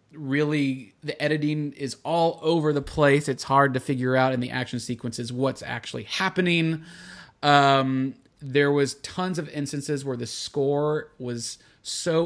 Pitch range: 125-160 Hz